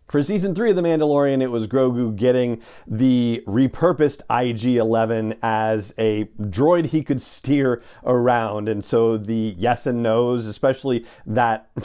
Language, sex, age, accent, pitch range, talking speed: English, male, 40-59, American, 120-155 Hz, 140 wpm